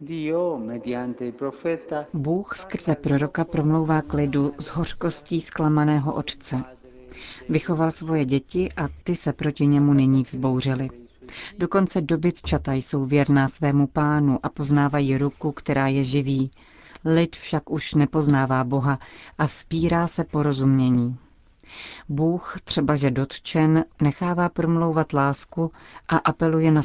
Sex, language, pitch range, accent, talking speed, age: female, Czech, 135-160 Hz, native, 115 wpm, 40-59